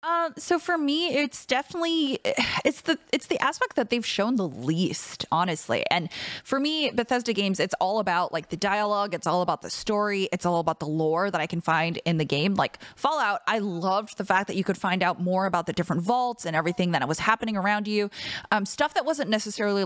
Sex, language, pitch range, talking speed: female, English, 175-240 Hz, 220 wpm